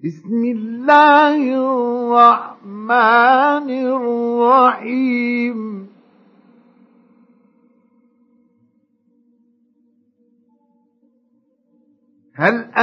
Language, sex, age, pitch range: Arabic, male, 50-69, 235-260 Hz